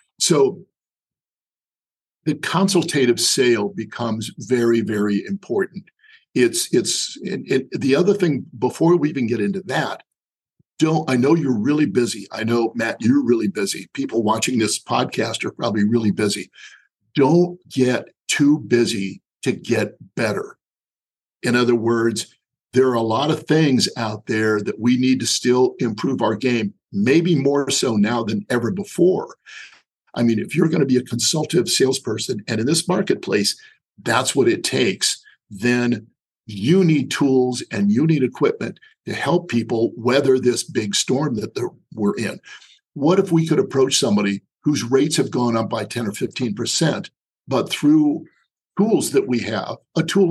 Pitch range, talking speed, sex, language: 115-175 Hz, 160 wpm, male, English